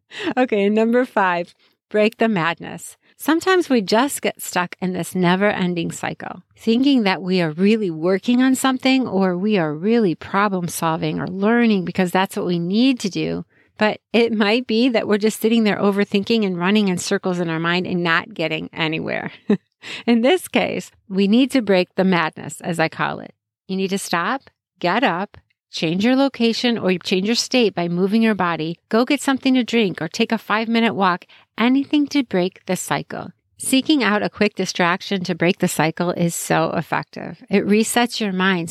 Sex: female